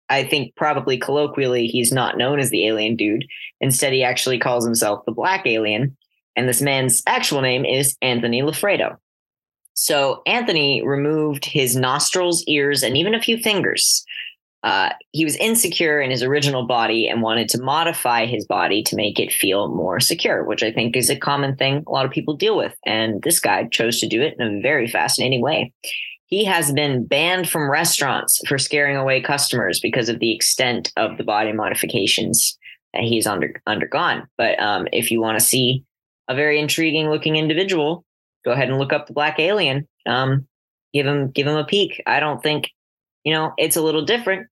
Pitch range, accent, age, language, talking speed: 125-155 Hz, American, 10-29, English, 190 wpm